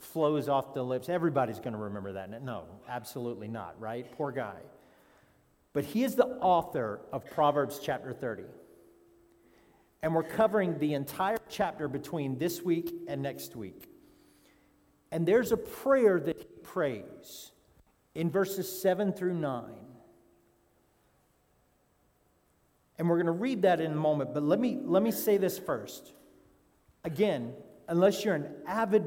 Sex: male